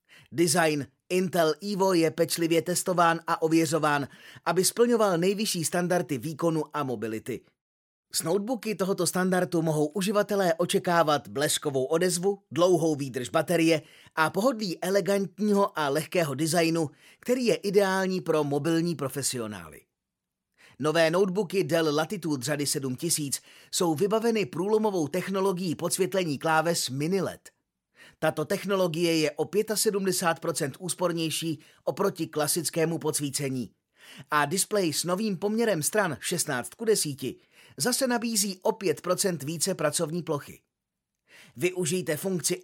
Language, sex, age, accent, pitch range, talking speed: Czech, male, 30-49, native, 155-195 Hz, 110 wpm